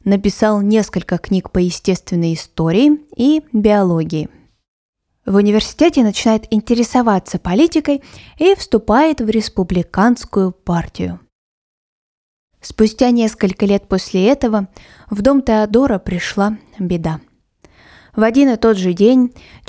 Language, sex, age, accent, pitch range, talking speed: Russian, female, 20-39, native, 180-240 Hz, 105 wpm